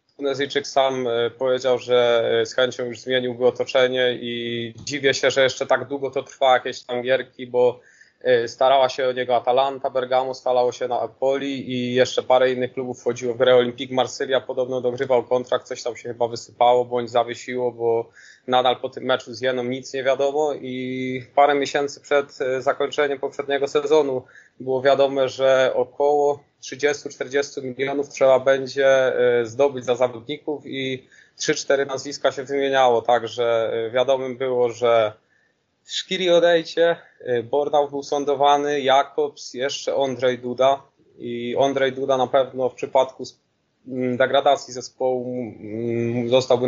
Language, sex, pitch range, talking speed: Polish, male, 125-140 Hz, 140 wpm